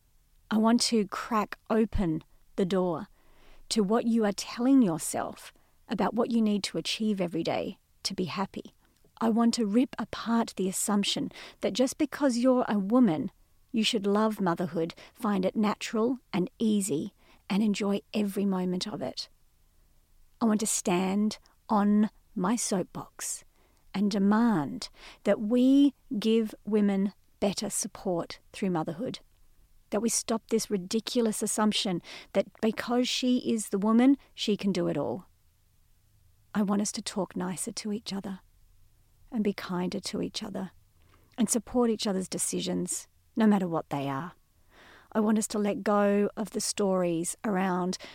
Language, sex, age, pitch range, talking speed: English, female, 40-59, 180-225 Hz, 150 wpm